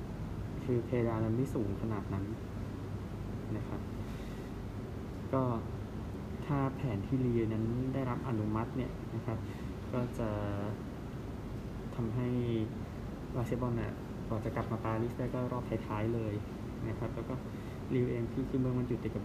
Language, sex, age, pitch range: Thai, male, 20-39, 110-125 Hz